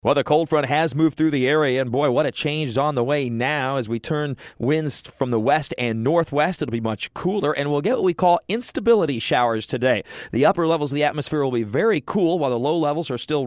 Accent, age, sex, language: American, 40-59, male, English